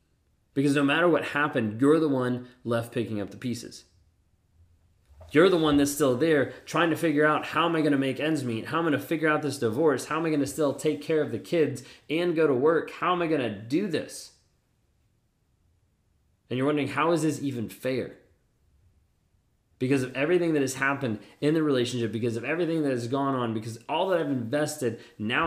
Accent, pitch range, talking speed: American, 110-155 Hz, 205 wpm